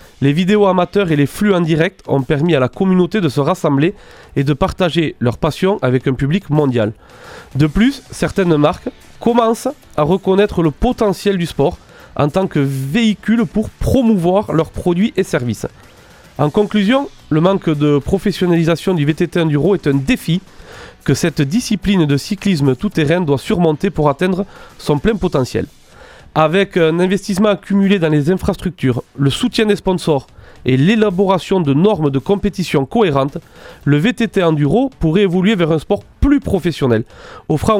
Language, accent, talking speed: French, French, 160 wpm